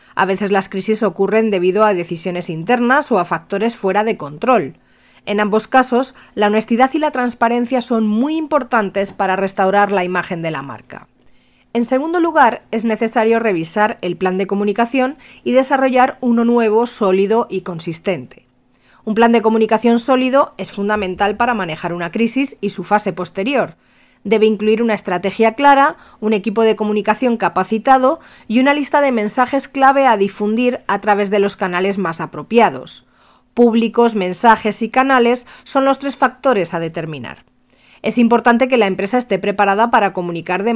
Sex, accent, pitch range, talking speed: female, Spanish, 190-240 Hz, 160 wpm